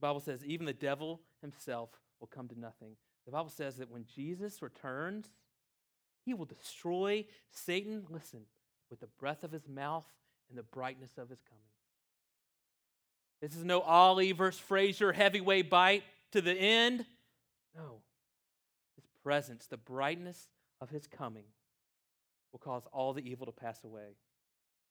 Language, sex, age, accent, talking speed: English, male, 30-49, American, 145 wpm